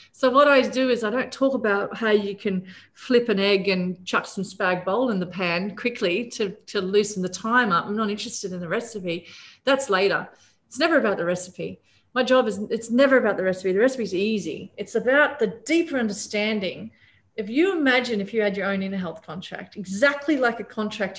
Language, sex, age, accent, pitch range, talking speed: English, female, 40-59, Australian, 185-255 Hz, 210 wpm